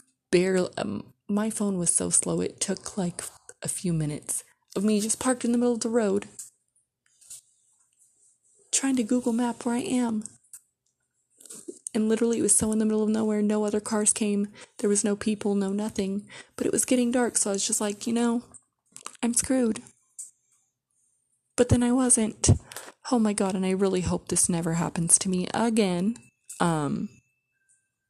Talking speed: 175 wpm